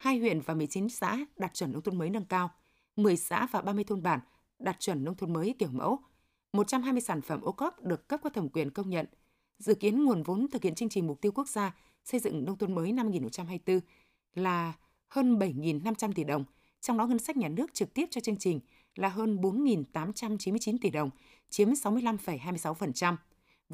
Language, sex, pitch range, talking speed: Vietnamese, female, 175-230 Hz, 195 wpm